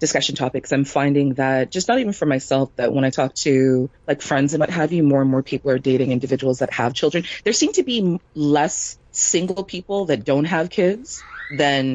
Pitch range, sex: 130-160 Hz, female